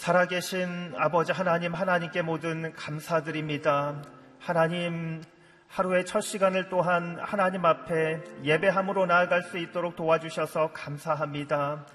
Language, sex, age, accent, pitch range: Korean, male, 40-59, native, 175-200 Hz